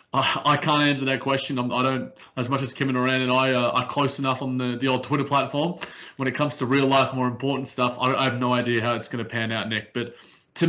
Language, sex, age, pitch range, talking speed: English, male, 20-39, 125-140 Hz, 260 wpm